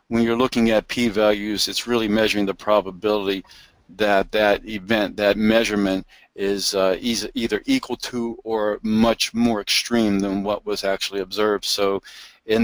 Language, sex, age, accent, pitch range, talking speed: English, male, 50-69, American, 100-115 Hz, 145 wpm